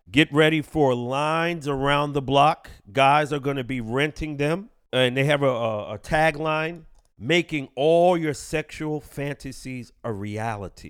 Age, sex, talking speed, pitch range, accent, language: 40-59, male, 150 wpm, 140-170 Hz, American, English